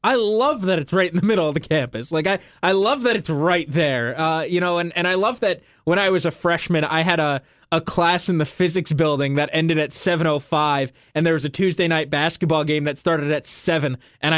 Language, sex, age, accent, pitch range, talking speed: English, male, 20-39, American, 155-185 Hz, 250 wpm